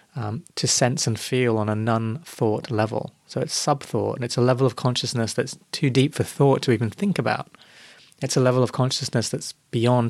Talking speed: 200 wpm